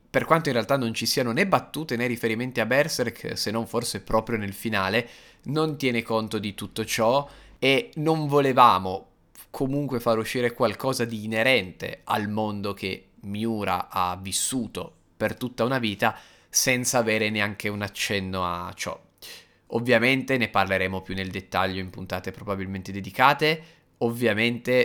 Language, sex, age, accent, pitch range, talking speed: Italian, male, 20-39, native, 95-115 Hz, 150 wpm